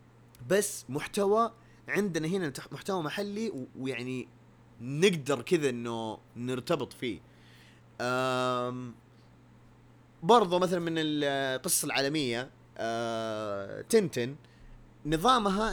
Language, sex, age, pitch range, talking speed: Arabic, male, 30-49, 120-170 Hz, 75 wpm